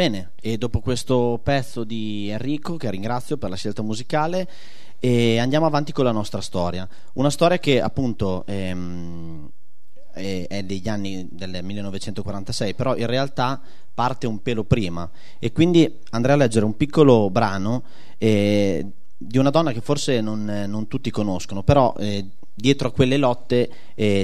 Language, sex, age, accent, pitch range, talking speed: Italian, male, 30-49, native, 100-130 Hz, 160 wpm